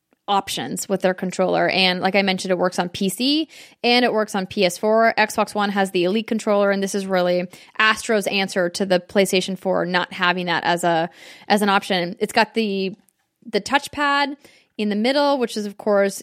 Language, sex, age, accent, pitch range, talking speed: English, female, 10-29, American, 190-225 Hz, 195 wpm